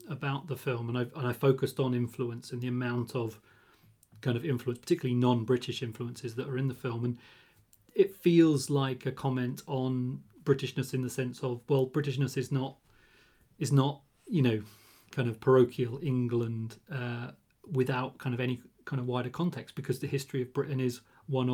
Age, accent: 40-59, British